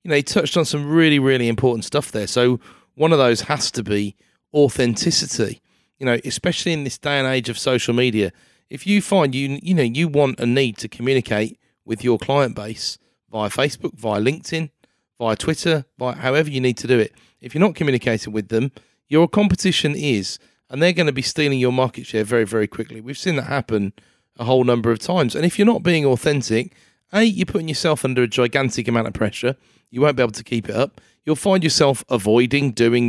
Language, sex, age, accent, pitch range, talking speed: English, male, 30-49, British, 120-155 Hz, 215 wpm